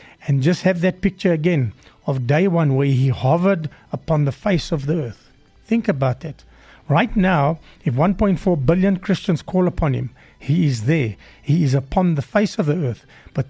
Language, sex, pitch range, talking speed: English, male, 135-180 Hz, 185 wpm